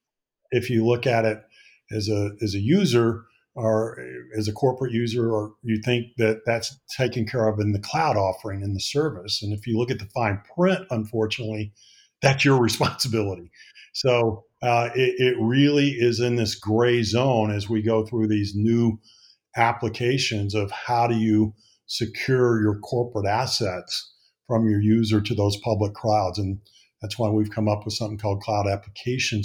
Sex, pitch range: male, 105-120 Hz